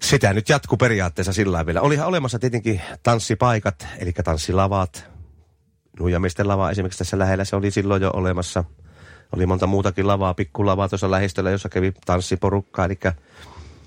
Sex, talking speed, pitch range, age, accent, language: male, 145 wpm, 75-105 Hz, 40-59, native, Finnish